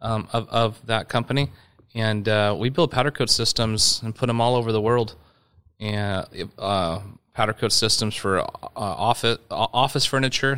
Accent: American